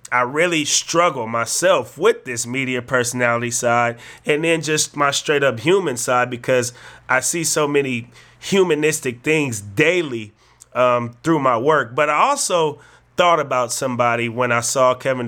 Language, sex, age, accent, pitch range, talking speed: English, male, 30-49, American, 125-165 Hz, 155 wpm